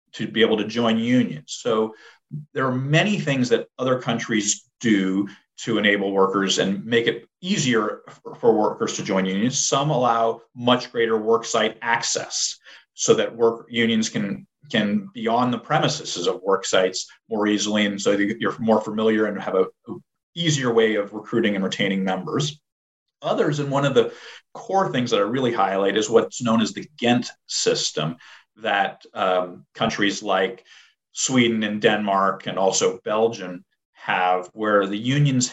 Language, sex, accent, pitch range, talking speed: English, male, American, 105-140 Hz, 160 wpm